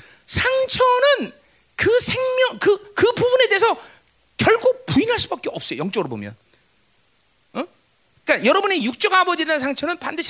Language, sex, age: Korean, male, 40-59